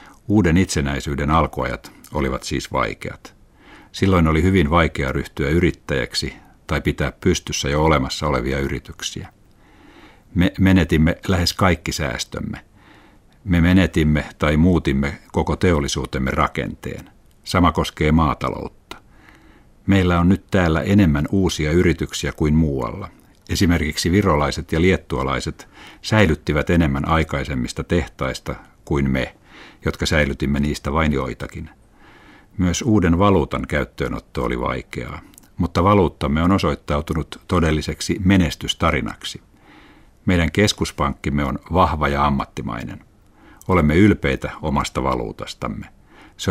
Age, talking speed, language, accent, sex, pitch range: 60-79, 105 wpm, Finnish, native, male, 75-90 Hz